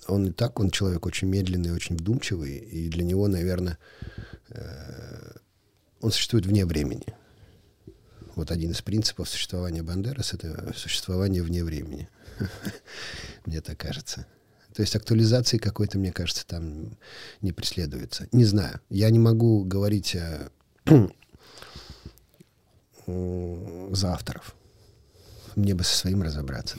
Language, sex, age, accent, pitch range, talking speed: Russian, male, 40-59, native, 90-110 Hz, 120 wpm